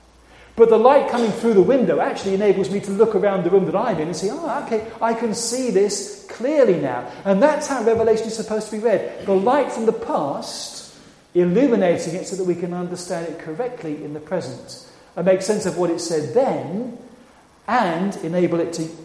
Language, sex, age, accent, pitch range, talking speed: English, male, 40-59, British, 165-225 Hz, 210 wpm